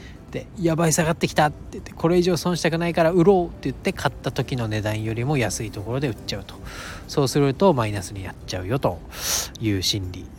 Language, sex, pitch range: Japanese, male, 105-155 Hz